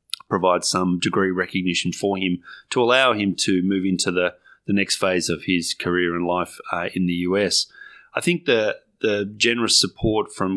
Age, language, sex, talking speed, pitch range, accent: 30-49, English, male, 180 wpm, 95-120 Hz, Australian